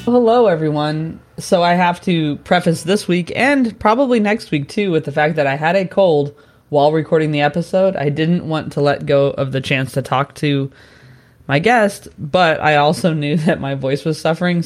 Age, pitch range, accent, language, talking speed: 20-39, 135-170 Hz, American, English, 200 wpm